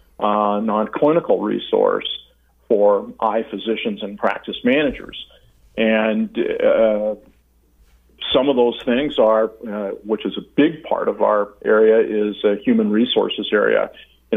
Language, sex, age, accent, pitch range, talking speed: English, male, 50-69, American, 100-120 Hz, 135 wpm